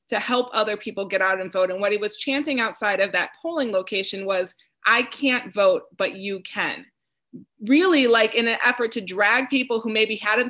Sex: female